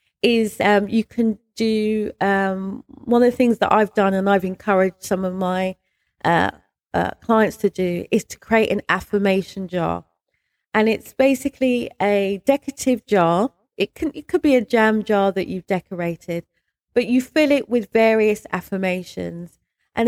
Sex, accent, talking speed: female, British, 160 wpm